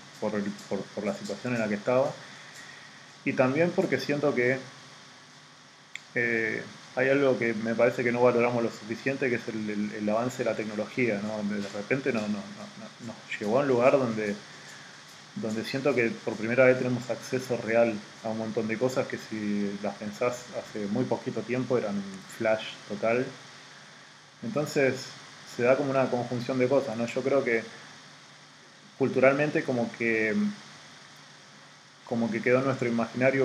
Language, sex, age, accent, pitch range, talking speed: Spanish, male, 20-39, Argentinian, 110-130 Hz, 170 wpm